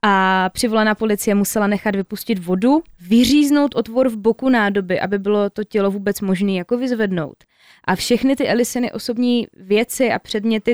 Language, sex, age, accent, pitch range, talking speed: Czech, female, 20-39, native, 190-230 Hz, 155 wpm